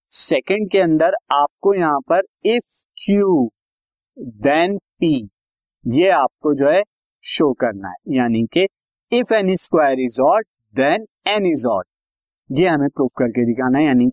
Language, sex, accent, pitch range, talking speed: Hindi, male, native, 120-180 Hz, 150 wpm